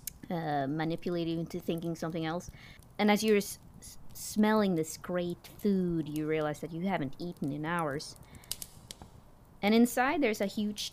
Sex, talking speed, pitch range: female, 145 wpm, 160-190 Hz